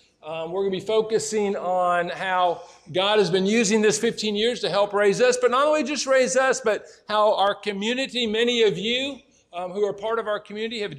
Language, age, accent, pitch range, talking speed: English, 50-69, American, 180-220 Hz, 220 wpm